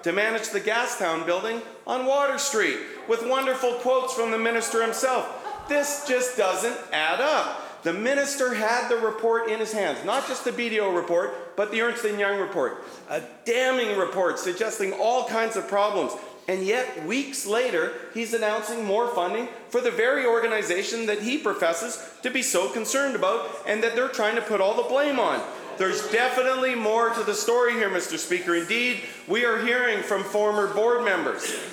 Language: English